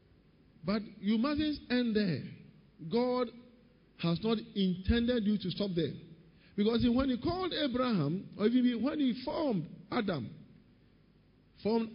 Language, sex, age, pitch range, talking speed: English, male, 50-69, 180-240 Hz, 130 wpm